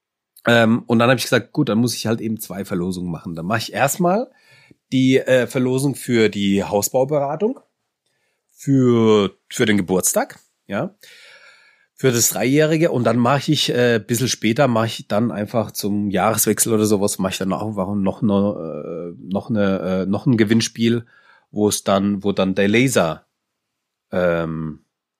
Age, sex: 30-49, male